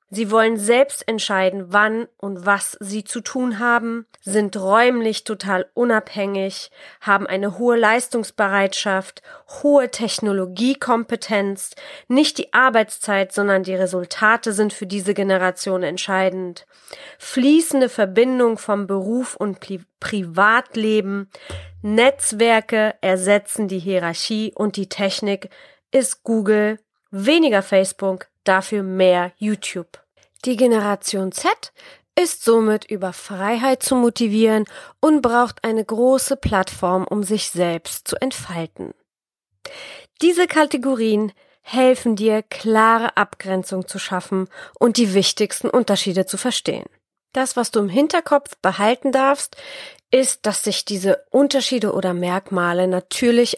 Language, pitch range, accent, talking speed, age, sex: German, 190-240 Hz, German, 110 wpm, 30-49, female